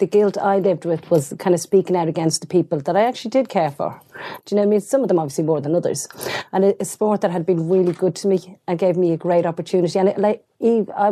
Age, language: 40-59, English